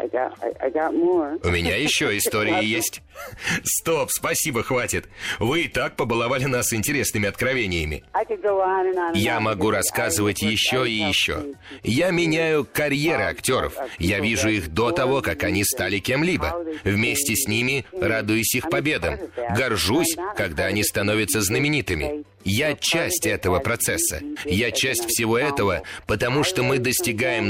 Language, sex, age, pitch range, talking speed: Russian, male, 30-49, 105-145 Hz, 125 wpm